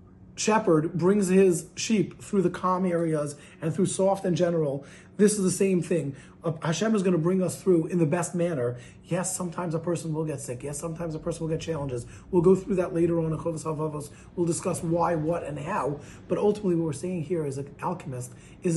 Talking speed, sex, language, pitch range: 205 wpm, male, English, 140-180 Hz